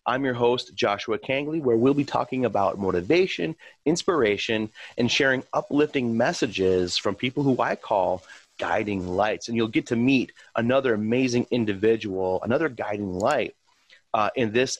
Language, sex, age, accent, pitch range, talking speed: English, male, 30-49, American, 100-120 Hz, 150 wpm